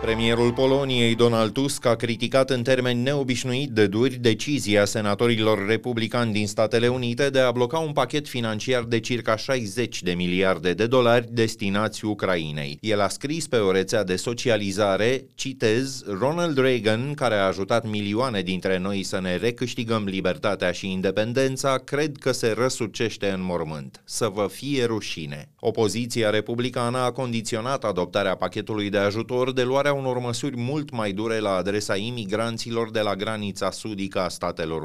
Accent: native